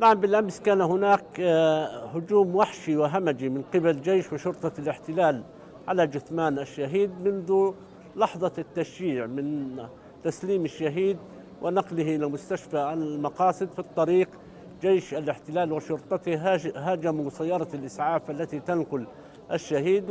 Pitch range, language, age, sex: 150-185 Hz, Arabic, 50-69, male